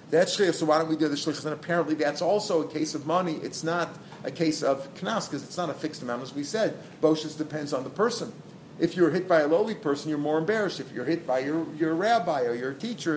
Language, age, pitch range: English, 40-59, 150-180 Hz